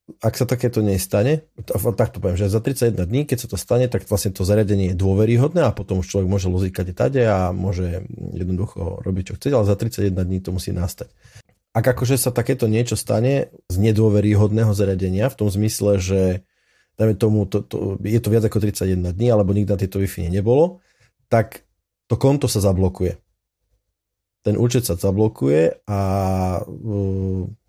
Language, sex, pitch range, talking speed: Slovak, male, 95-110 Hz, 180 wpm